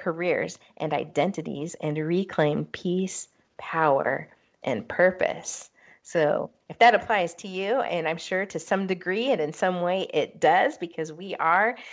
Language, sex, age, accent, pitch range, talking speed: English, female, 30-49, American, 150-185 Hz, 150 wpm